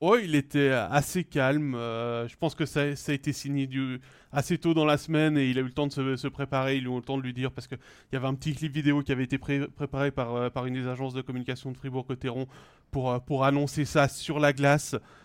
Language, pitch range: French, 125-150 Hz